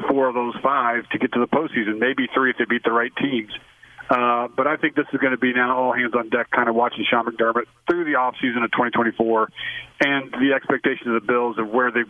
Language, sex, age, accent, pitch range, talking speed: English, male, 40-59, American, 120-140 Hz, 255 wpm